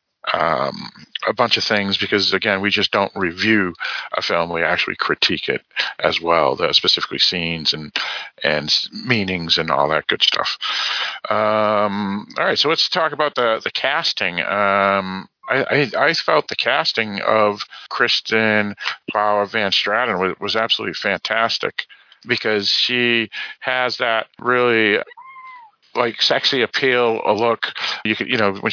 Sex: male